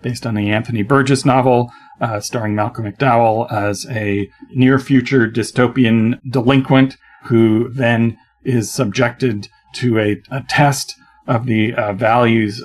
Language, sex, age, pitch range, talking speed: English, male, 40-59, 110-130 Hz, 130 wpm